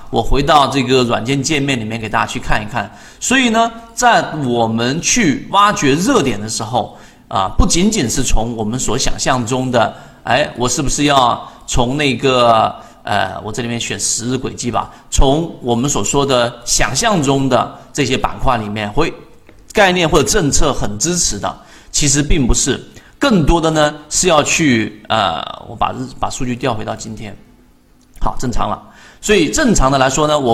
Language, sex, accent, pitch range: Chinese, male, native, 120-155 Hz